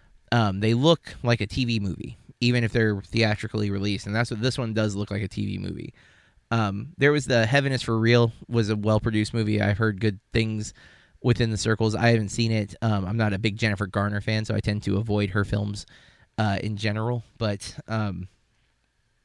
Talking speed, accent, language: 205 wpm, American, English